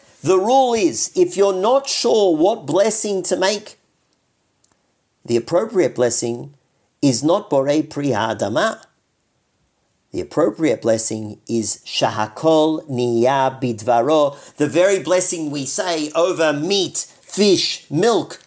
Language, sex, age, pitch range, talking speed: English, male, 50-69, 135-200 Hz, 110 wpm